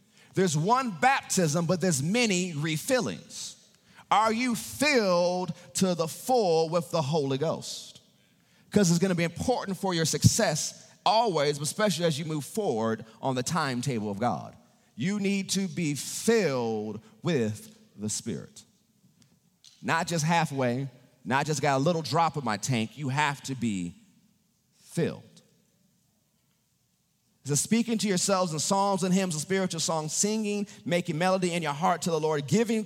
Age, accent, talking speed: 40-59, American, 155 wpm